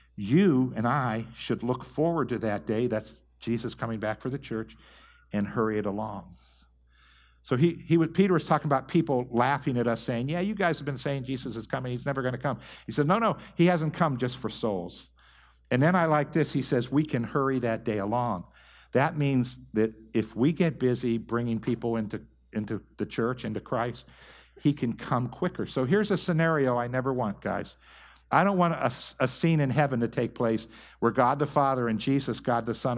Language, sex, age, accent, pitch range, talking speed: English, male, 60-79, American, 115-155 Hz, 215 wpm